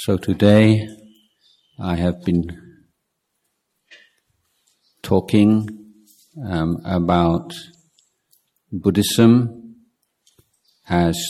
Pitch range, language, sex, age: 90-115 Hz, Thai, male, 50-69